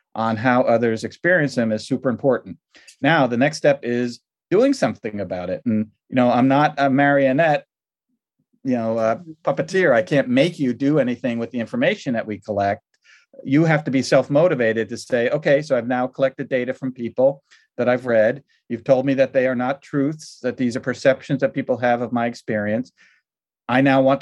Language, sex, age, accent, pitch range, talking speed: English, male, 40-59, American, 115-140 Hz, 195 wpm